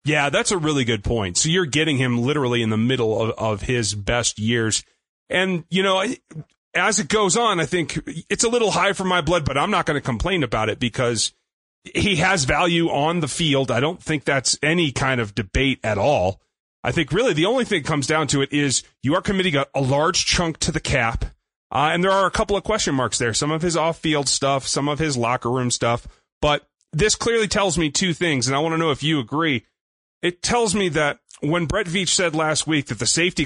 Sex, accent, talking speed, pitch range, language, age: male, American, 235 wpm, 125-165 Hz, English, 30-49